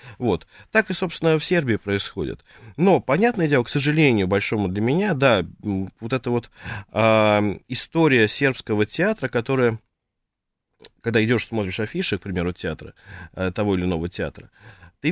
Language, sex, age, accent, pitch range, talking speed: Russian, male, 20-39, native, 105-140 Hz, 145 wpm